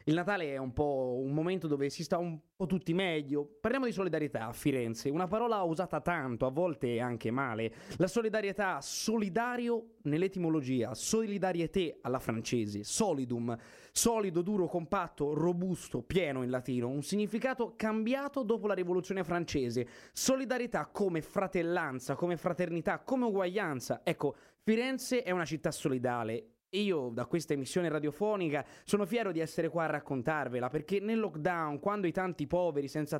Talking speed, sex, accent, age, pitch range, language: 150 wpm, male, native, 20-39, 140-205 Hz, Italian